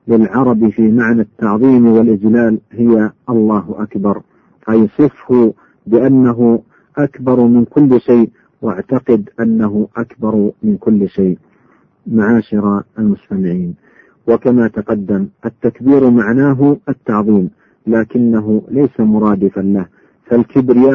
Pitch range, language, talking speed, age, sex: 110-125 Hz, Arabic, 95 wpm, 50-69, male